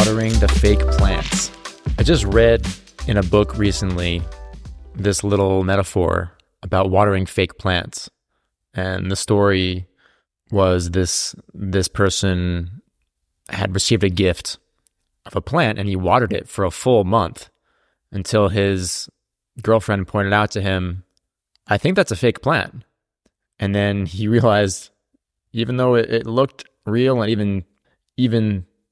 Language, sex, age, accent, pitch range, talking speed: English, male, 20-39, American, 90-105 Hz, 135 wpm